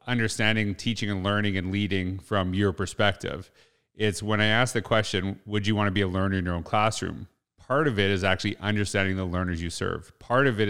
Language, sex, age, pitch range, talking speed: English, male, 30-49, 95-115 Hz, 220 wpm